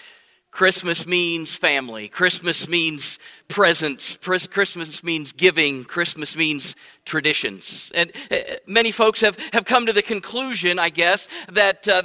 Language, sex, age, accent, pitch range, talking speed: English, male, 50-69, American, 180-225 Hz, 135 wpm